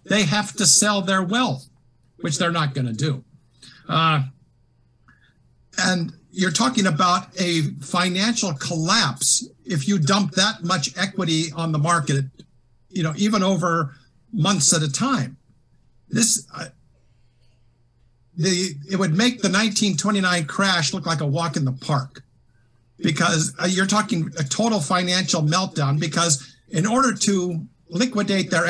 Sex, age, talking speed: male, 50-69, 140 wpm